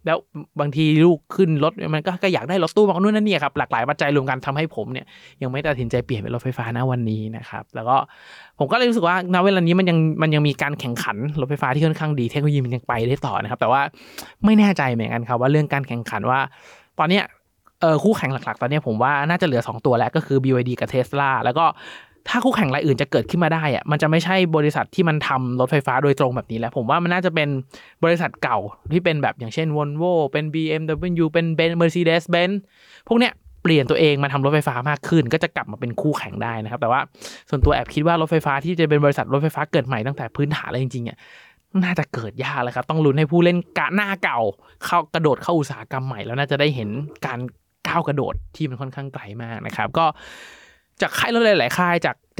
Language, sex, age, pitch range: Thai, male, 20-39, 130-170 Hz